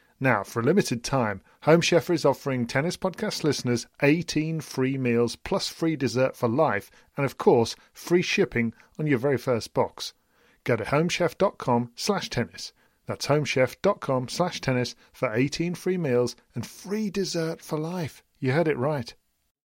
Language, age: English, 40-59